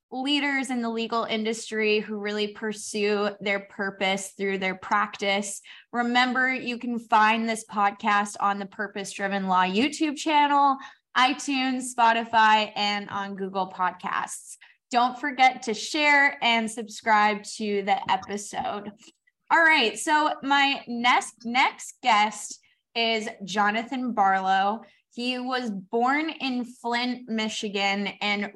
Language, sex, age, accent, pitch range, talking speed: English, female, 10-29, American, 205-250 Hz, 120 wpm